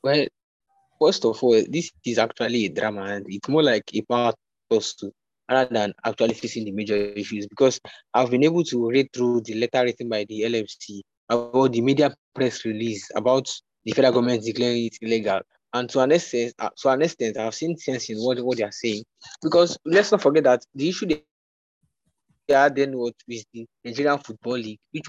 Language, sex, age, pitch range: English, male, 20-39, 115-145 Hz